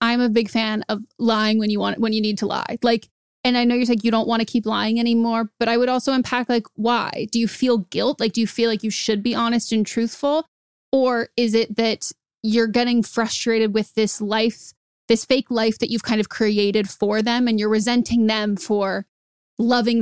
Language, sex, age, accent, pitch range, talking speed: English, female, 20-39, American, 215-235 Hz, 225 wpm